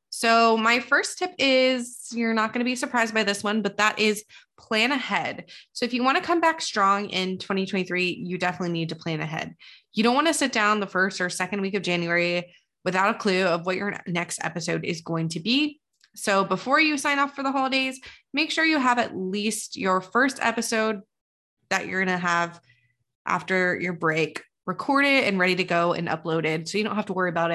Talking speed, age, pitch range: 215 wpm, 20-39, 180-245 Hz